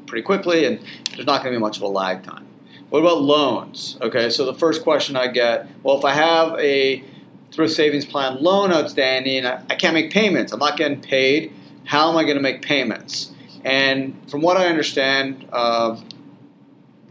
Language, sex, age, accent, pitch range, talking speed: English, male, 40-59, American, 110-140 Hz, 195 wpm